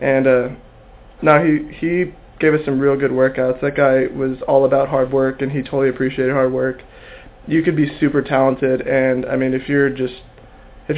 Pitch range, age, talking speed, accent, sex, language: 130-150 Hz, 20-39, 195 wpm, American, male, English